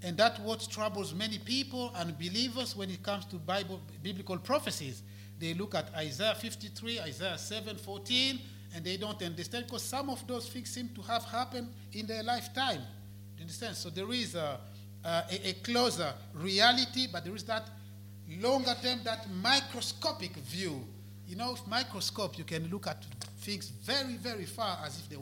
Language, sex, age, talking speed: English, male, 50-69, 175 wpm